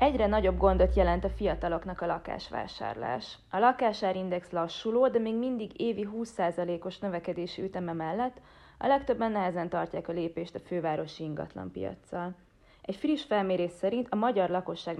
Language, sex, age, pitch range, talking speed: Hungarian, female, 30-49, 170-215 Hz, 145 wpm